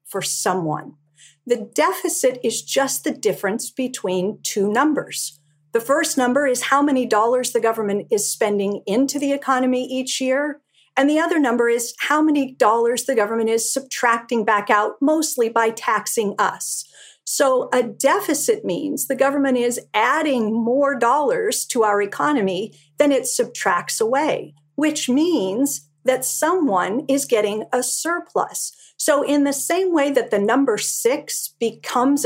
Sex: female